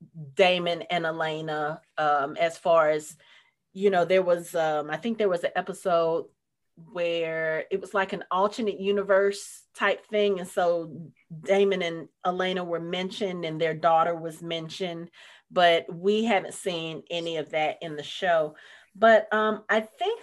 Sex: female